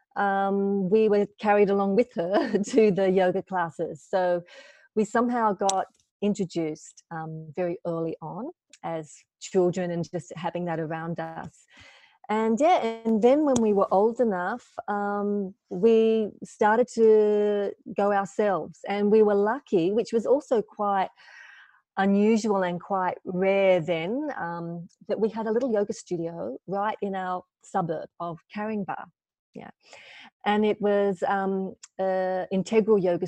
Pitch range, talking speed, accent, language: 175-215 Hz, 140 wpm, Australian, English